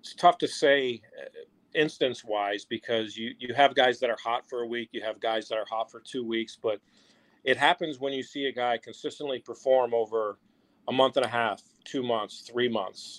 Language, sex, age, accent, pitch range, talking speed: English, male, 40-59, American, 115-130 Hz, 210 wpm